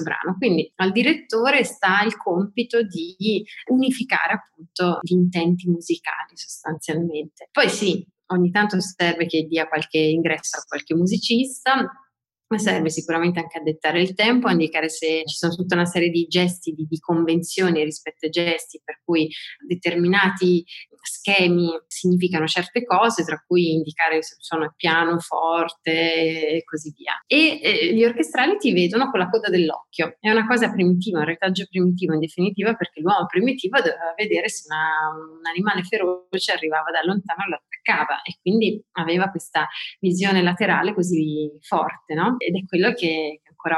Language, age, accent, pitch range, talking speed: Italian, 30-49, native, 160-205 Hz, 160 wpm